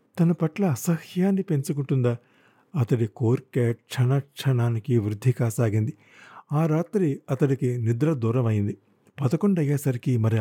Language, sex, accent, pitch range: Telugu, male, native, 115-150 Hz